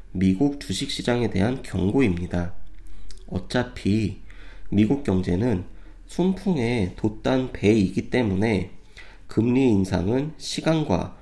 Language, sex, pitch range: Korean, male, 95-125 Hz